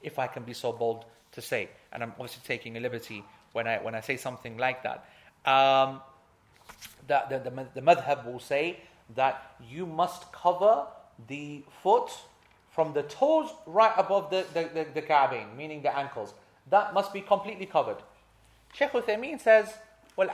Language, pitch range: English, 155-210 Hz